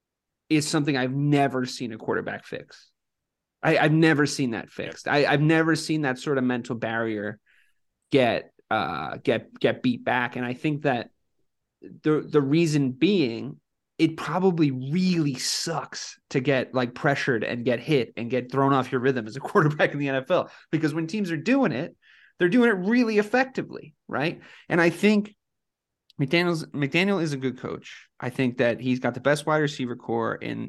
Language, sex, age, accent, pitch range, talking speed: English, male, 30-49, American, 125-160 Hz, 180 wpm